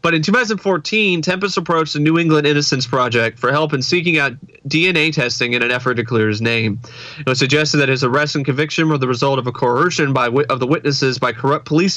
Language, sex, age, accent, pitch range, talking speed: English, male, 30-49, American, 125-155 Hz, 220 wpm